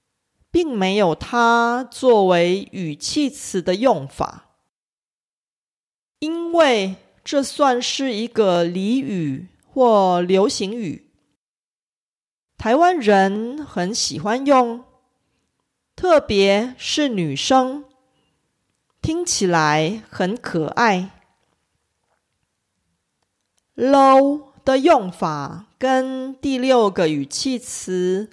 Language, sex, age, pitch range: Korean, female, 40-59, 190-265 Hz